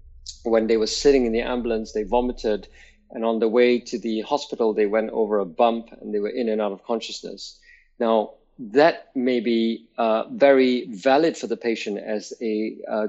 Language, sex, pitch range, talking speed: English, male, 110-135 Hz, 195 wpm